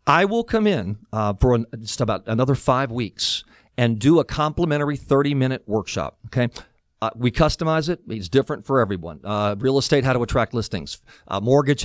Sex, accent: male, American